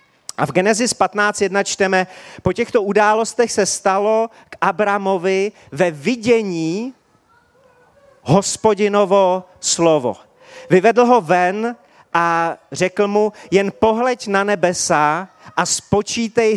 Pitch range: 180-230 Hz